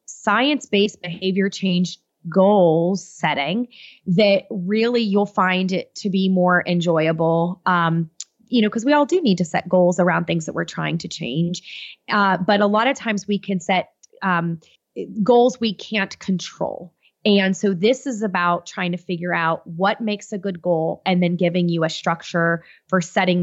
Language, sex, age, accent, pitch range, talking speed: English, female, 20-39, American, 175-210 Hz, 175 wpm